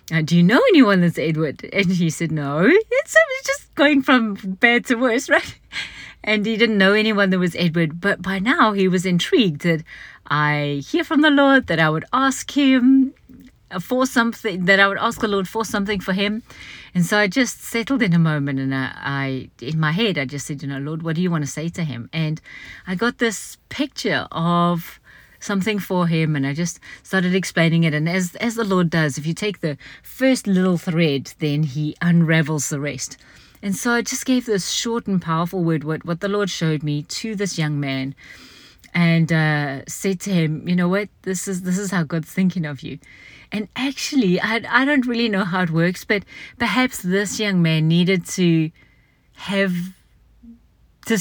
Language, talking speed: English, 200 wpm